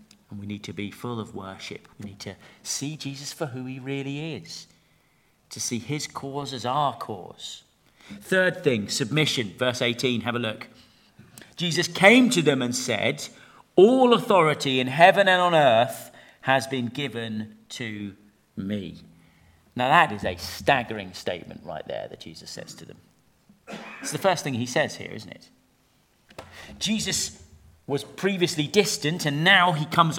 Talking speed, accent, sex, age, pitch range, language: 160 wpm, British, male, 40-59, 120-205 Hz, English